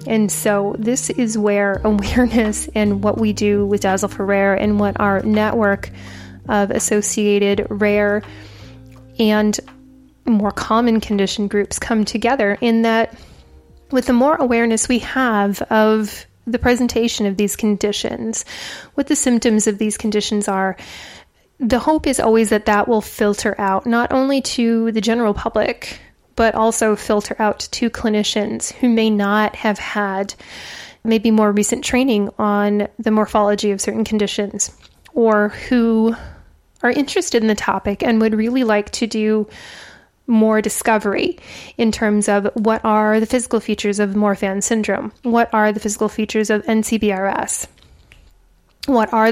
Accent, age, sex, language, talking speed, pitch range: American, 30-49, female, English, 145 wpm, 205-235 Hz